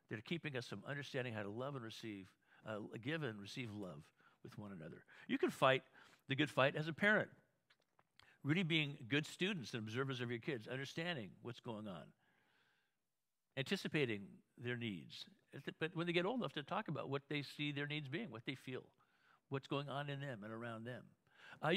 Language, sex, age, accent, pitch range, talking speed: English, male, 50-69, American, 125-170 Hz, 195 wpm